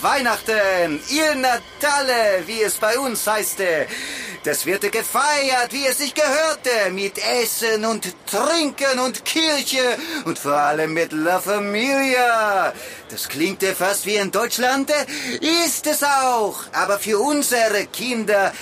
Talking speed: 130 wpm